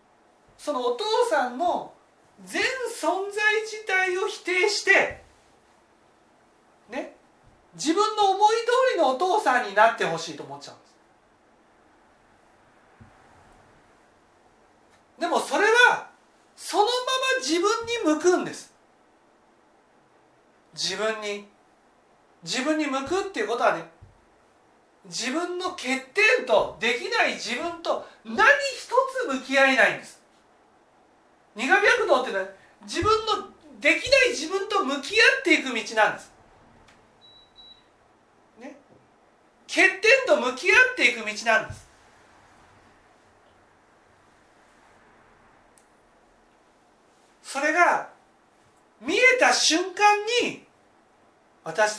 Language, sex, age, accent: Japanese, male, 40-59, native